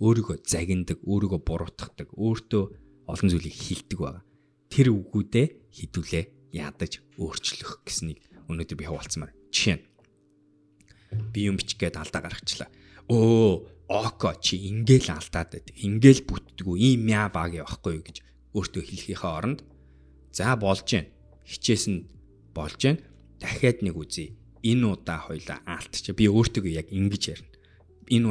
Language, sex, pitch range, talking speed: English, male, 85-110 Hz, 90 wpm